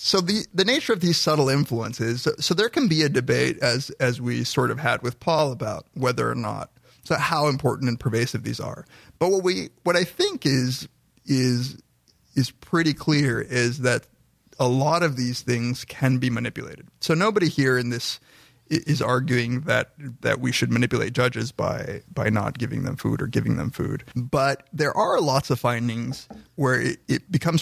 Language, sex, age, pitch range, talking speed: English, male, 30-49, 120-150 Hz, 190 wpm